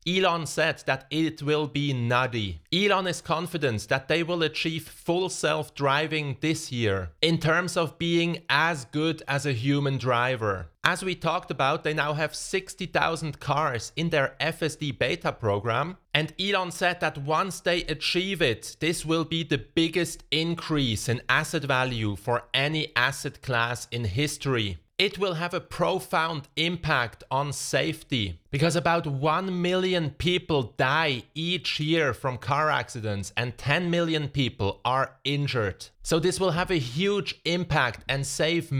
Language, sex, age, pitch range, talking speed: English, male, 30-49, 130-170 Hz, 155 wpm